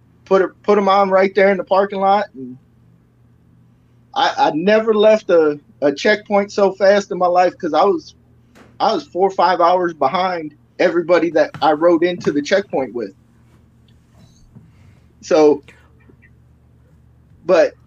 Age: 30-49